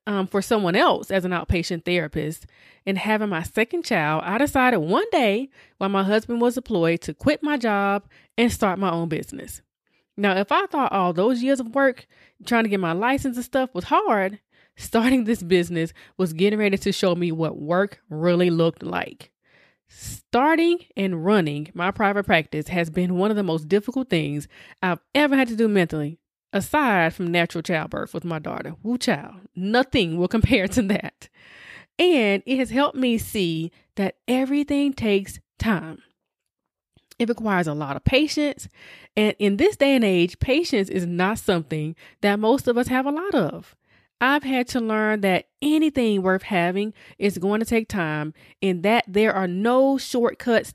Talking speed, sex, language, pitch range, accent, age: 175 wpm, female, English, 180-250 Hz, American, 20-39